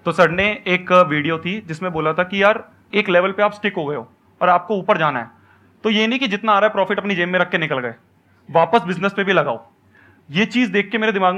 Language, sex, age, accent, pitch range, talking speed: Hindi, male, 30-49, native, 150-190 Hz, 270 wpm